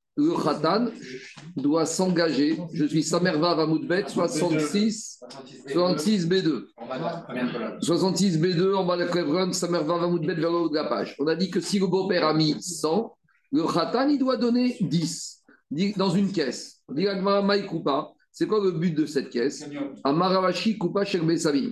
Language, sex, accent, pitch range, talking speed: French, male, French, 160-200 Hz, 145 wpm